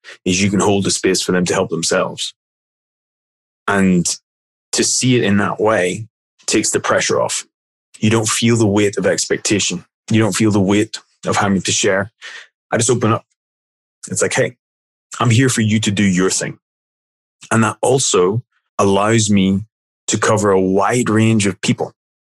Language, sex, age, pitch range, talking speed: English, male, 20-39, 95-110 Hz, 175 wpm